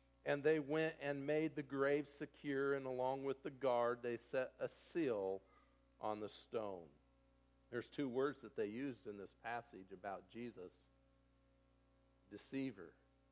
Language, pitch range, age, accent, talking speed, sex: English, 135-190 Hz, 50-69, American, 145 wpm, male